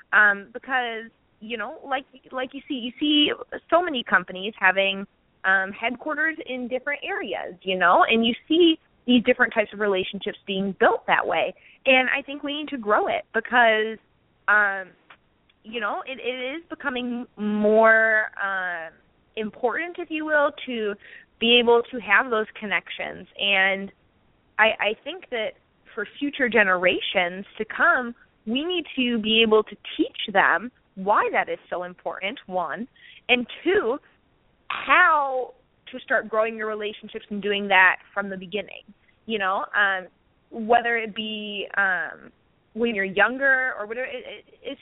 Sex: female